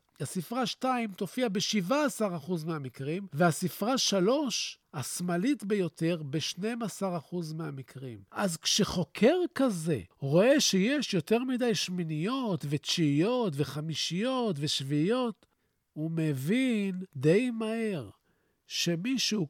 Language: Hebrew